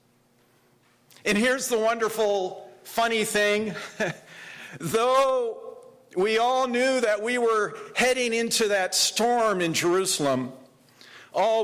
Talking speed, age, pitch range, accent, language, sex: 105 wpm, 50-69, 135-215 Hz, American, English, male